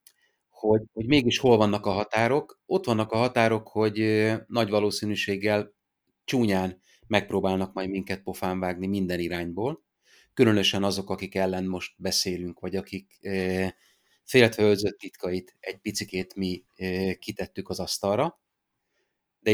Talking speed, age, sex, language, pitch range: 130 wpm, 30-49, male, Hungarian, 95-110 Hz